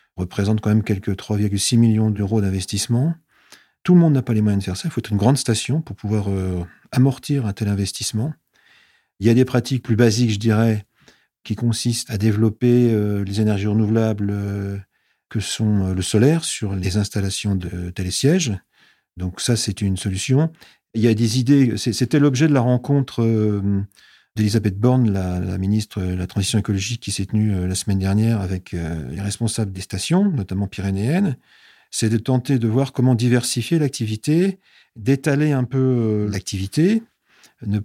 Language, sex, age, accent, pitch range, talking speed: French, male, 40-59, French, 100-125 Hz, 180 wpm